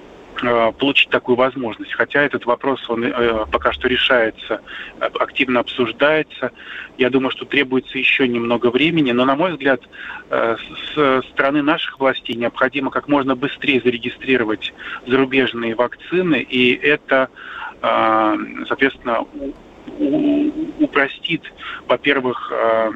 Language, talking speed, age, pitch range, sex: Russian, 100 wpm, 20-39, 120-140 Hz, male